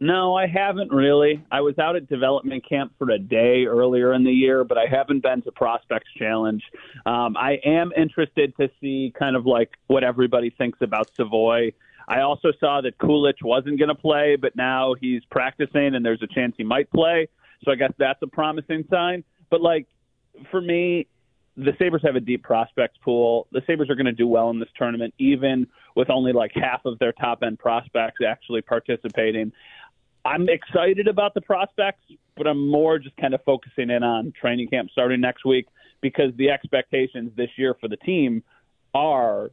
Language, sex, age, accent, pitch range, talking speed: English, male, 30-49, American, 120-155 Hz, 190 wpm